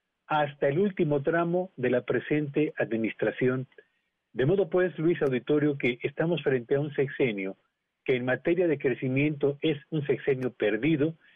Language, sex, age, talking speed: Spanish, male, 40-59, 150 wpm